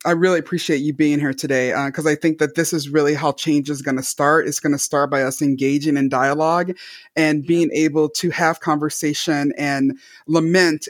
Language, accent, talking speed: English, American, 210 wpm